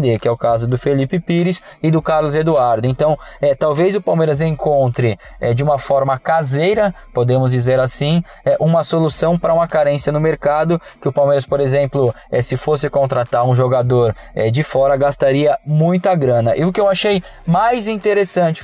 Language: Portuguese